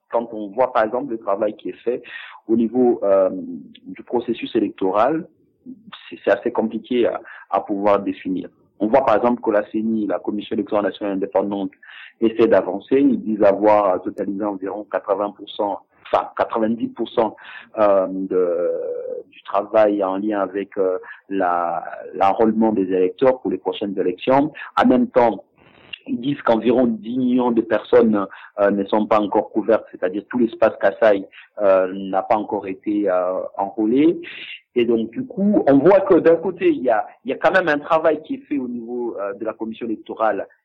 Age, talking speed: 50-69, 175 wpm